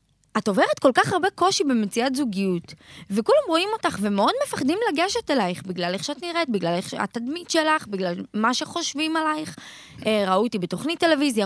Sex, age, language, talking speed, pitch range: female, 20-39, Hebrew, 155 wpm, 210-335 Hz